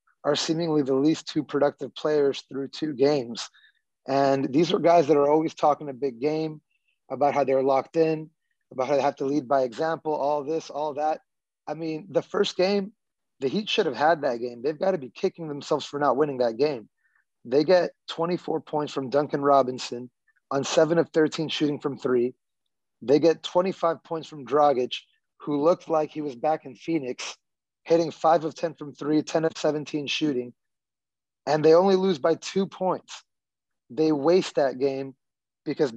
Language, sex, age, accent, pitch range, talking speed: English, male, 30-49, American, 140-165 Hz, 185 wpm